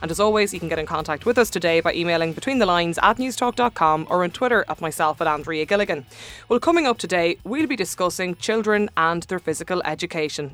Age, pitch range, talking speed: 20-39, 160-205 Hz, 215 wpm